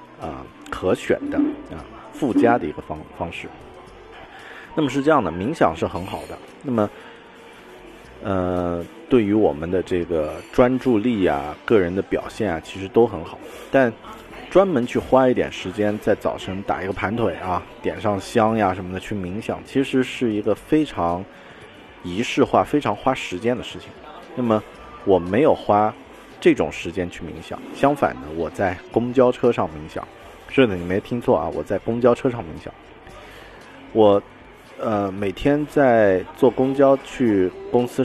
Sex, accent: male, native